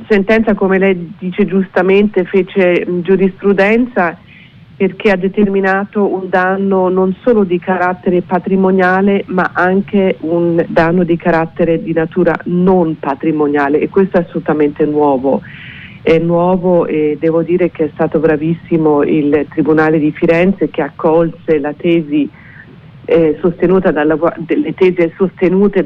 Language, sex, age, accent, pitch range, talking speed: Italian, female, 40-59, native, 150-180 Hz, 125 wpm